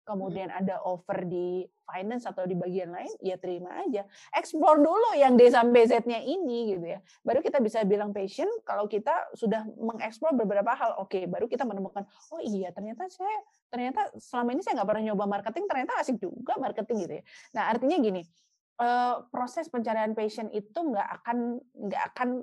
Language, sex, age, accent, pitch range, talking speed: Indonesian, female, 30-49, native, 195-270 Hz, 175 wpm